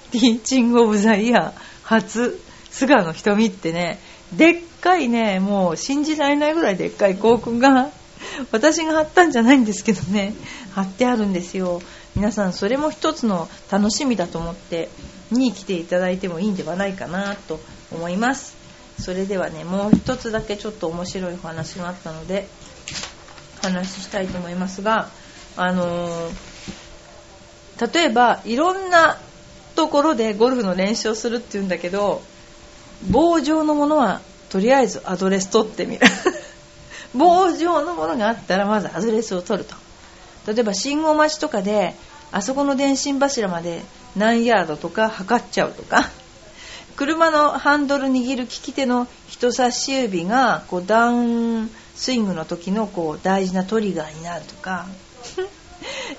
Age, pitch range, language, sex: 40-59, 190-260 Hz, Japanese, female